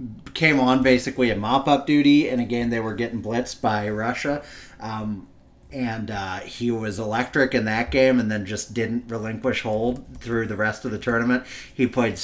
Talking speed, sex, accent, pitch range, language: 180 wpm, male, American, 115-140 Hz, English